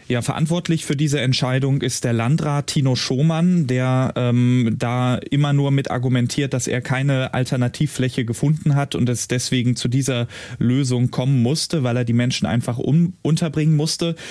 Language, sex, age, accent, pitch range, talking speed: German, male, 20-39, German, 120-140 Hz, 165 wpm